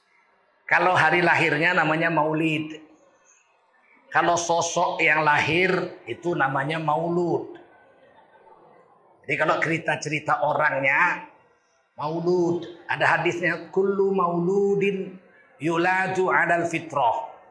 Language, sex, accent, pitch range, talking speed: Indonesian, male, native, 155-200 Hz, 80 wpm